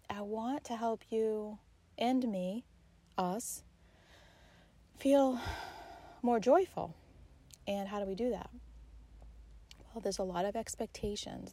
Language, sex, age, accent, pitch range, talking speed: English, female, 30-49, American, 180-220 Hz, 120 wpm